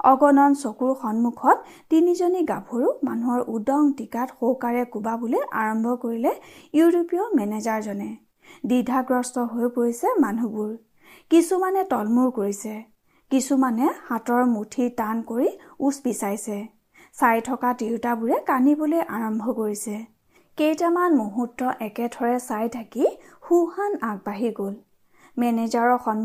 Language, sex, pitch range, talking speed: Hindi, female, 225-295 Hz, 70 wpm